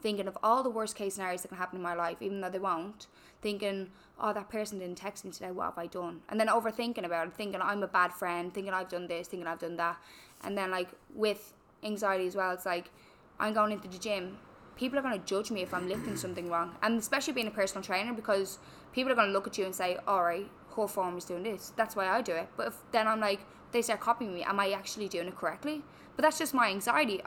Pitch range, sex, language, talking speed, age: 190-225 Hz, female, English, 260 wpm, 10-29